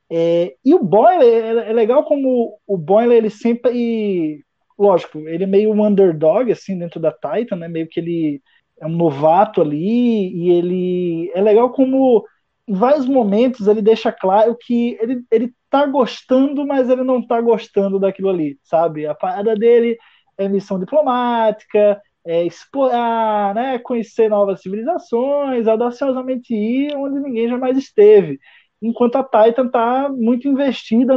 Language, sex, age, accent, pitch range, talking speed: Portuguese, male, 20-39, Brazilian, 175-240 Hz, 150 wpm